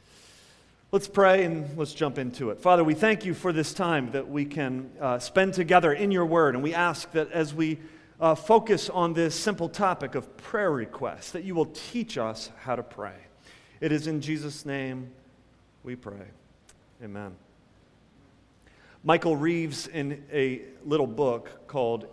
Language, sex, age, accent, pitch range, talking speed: English, male, 40-59, American, 135-190 Hz, 165 wpm